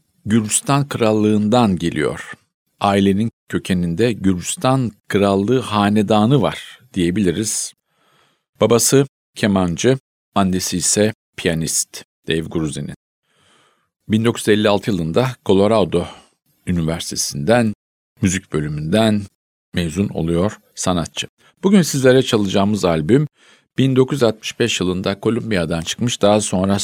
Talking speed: 80 wpm